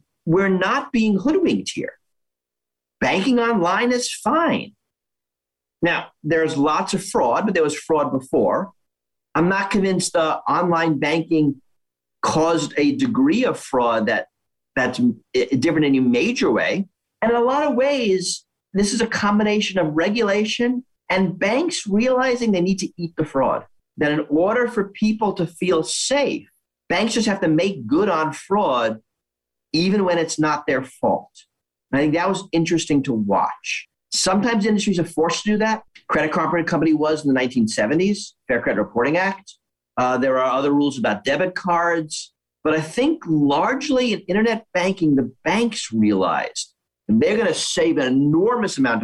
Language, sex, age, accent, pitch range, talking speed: English, male, 40-59, American, 140-210 Hz, 160 wpm